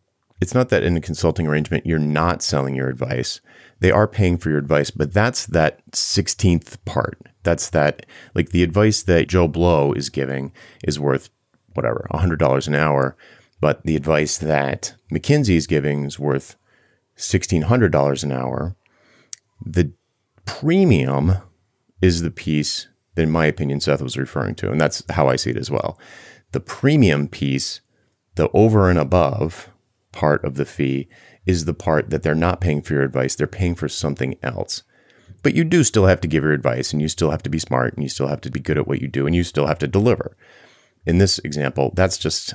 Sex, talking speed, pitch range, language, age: male, 190 wpm, 75-100 Hz, English, 30-49